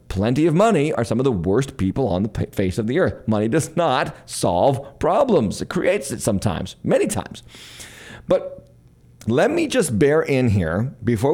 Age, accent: 40-59, American